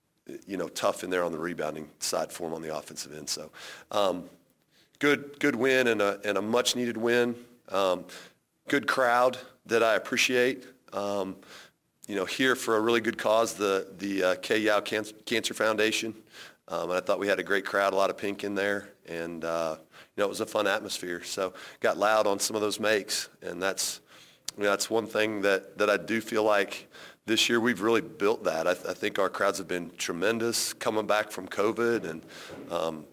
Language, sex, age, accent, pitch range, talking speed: English, male, 40-59, American, 100-120 Hz, 205 wpm